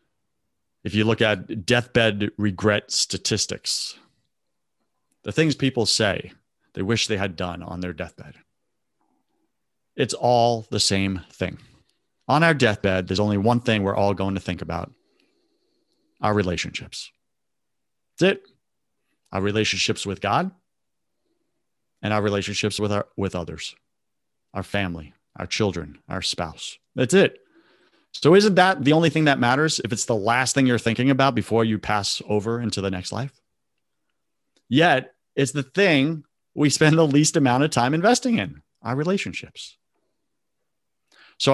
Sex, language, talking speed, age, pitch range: male, English, 145 wpm, 30-49, 100-140 Hz